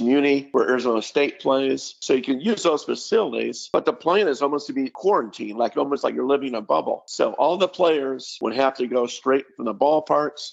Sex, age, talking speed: male, 50-69, 220 wpm